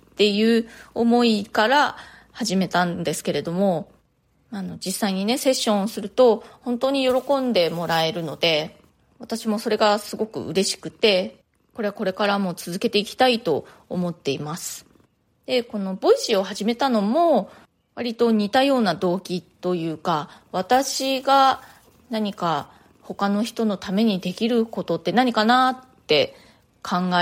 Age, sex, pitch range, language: 20-39, female, 180-245 Hz, Japanese